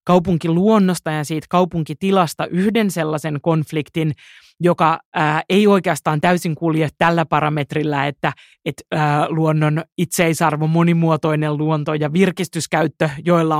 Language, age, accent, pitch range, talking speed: Finnish, 30-49, native, 155-175 Hz, 110 wpm